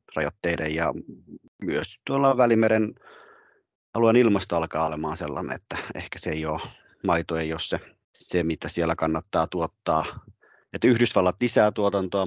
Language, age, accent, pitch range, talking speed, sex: Finnish, 30-49, native, 85-105 Hz, 135 wpm, male